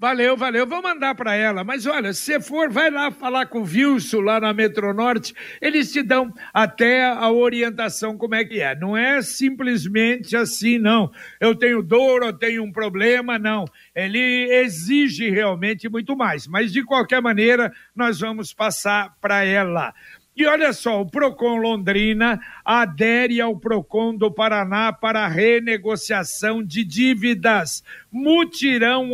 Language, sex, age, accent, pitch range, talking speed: Portuguese, male, 60-79, Brazilian, 220-260 Hz, 150 wpm